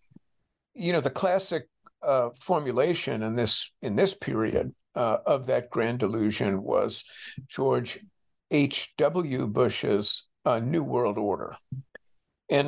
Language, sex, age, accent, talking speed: English, male, 50-69, American, 125 wpm